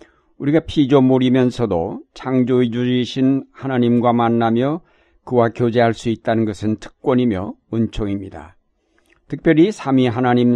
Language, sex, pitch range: Korean, male, 110-130 Hz